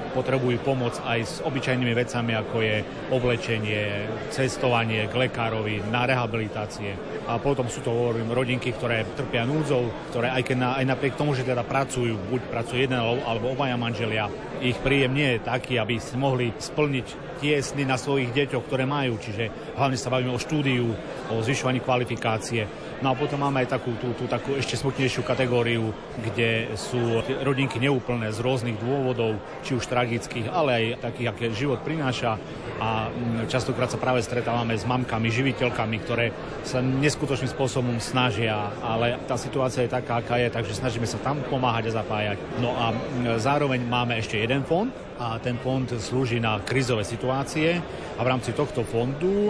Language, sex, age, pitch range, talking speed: Slovak, male, 40-59, 115-130 Hz, 170 wpm